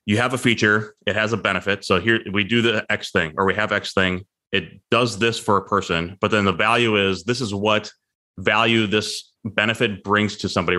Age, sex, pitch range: 20-39, male, 95-110 Hz